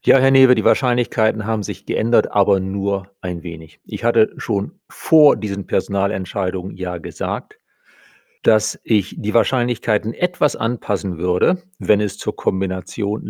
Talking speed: 140 wpm